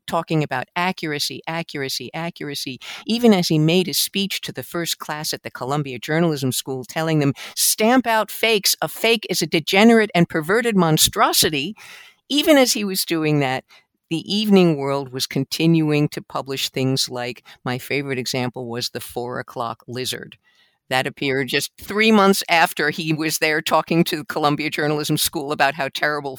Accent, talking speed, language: American, 165 wpm, English